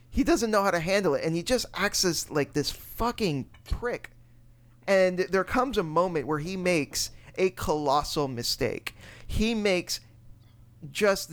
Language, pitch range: English, 120-175 Hz